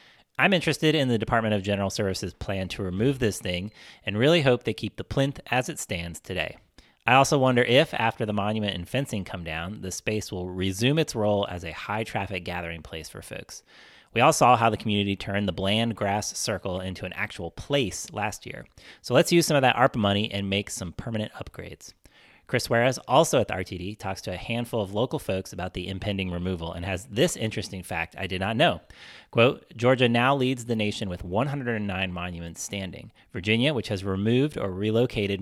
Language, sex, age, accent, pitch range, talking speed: English, male, 30-49, American, 95-120 Hz, 205 wpm